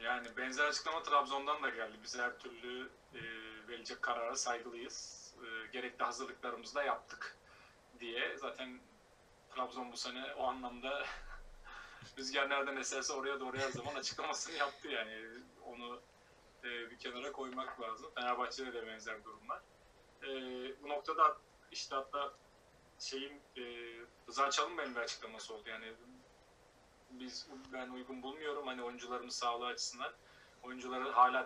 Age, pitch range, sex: 30-49, 120-135 Hz, male